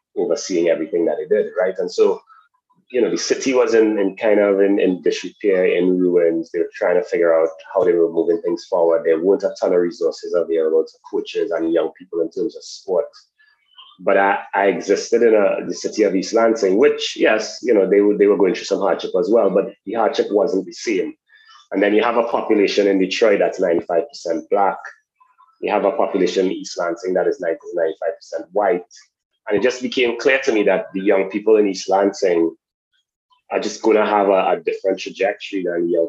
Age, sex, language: 30-49, male, English